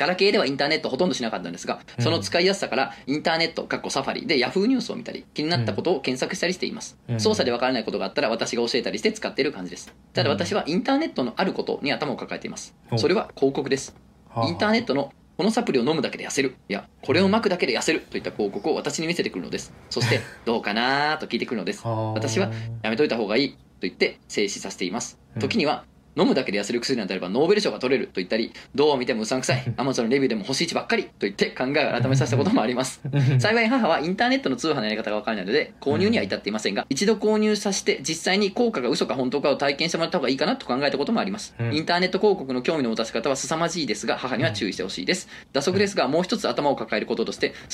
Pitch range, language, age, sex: 135-205 Hz, Japanese, 20-39, male